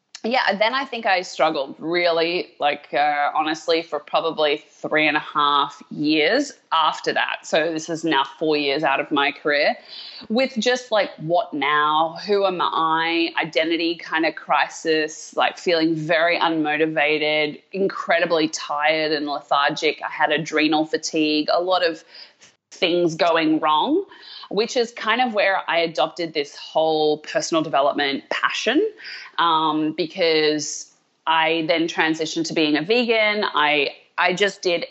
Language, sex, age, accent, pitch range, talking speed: English, female, 20-39, Australian, 155-190 Hz, 145 wpm